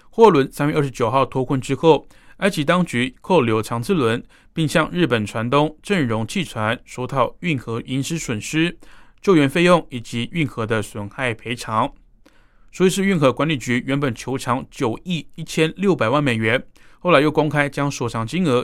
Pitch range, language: 120-160 Hz, Chinese